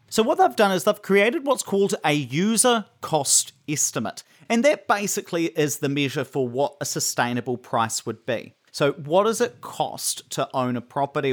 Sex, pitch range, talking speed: male, 140-205 Hz, 185 wpm